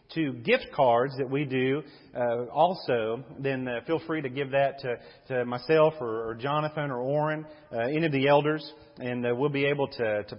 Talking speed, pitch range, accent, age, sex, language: 200 wpm, 135-170 Hz, American, 40-59, male, English